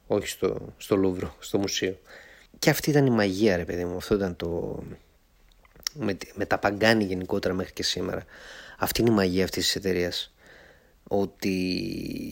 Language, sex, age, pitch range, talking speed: Greek, male, 30-49, 90-110 Hz, 160 wpm